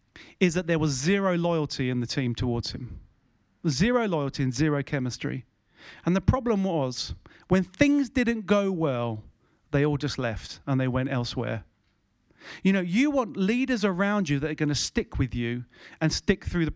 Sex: male